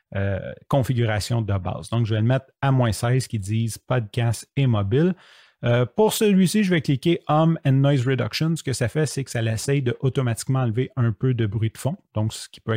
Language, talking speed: French, 225 wpm